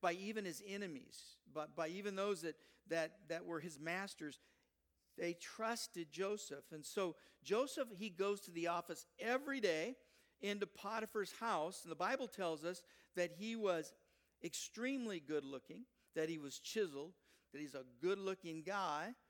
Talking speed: 155 wpm